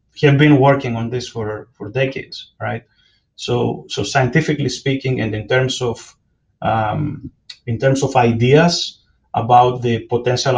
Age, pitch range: 30-49, 120-145 Hz